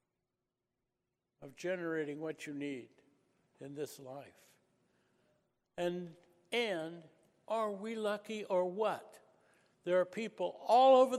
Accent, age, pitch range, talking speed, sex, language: American, 60-79, 160-205 Hz, 105 wpm, male, English